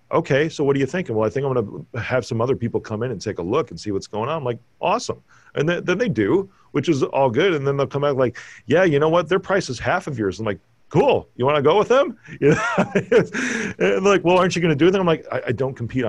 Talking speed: 295 wpm